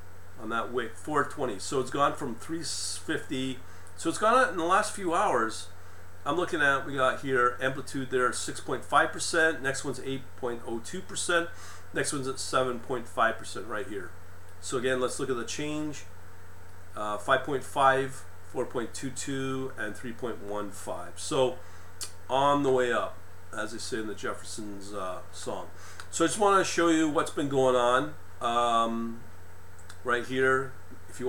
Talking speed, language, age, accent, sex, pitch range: 145 wpm, English, 40-59, American, male, 90-130 Hz